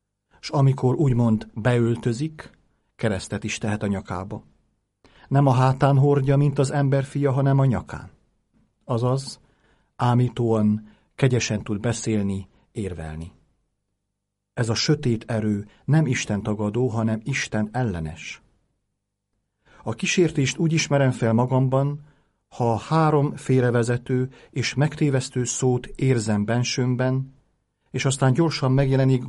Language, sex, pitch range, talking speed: Hungarian, male, 105-140 Hz, 110 wpm